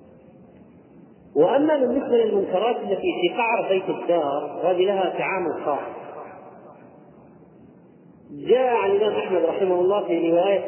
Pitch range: 160-220 Hz